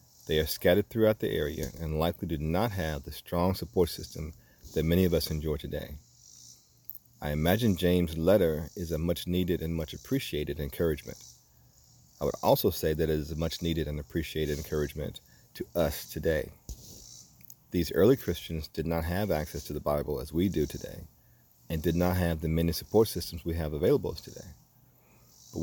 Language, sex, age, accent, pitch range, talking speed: English, male, 40-59, American, 75-90 Hz, 170 wpm